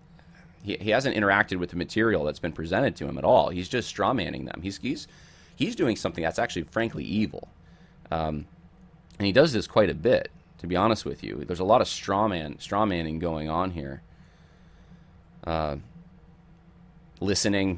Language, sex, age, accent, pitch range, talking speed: English, male, 30-49, American, 80-95 Hz, 170 wpm